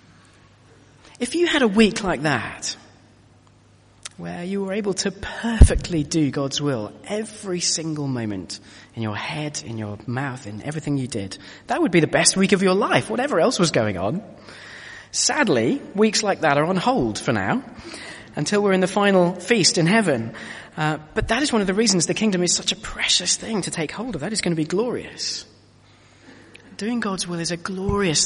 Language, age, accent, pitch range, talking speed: English, 30-49, British, 110-175 Hz, 195 wpm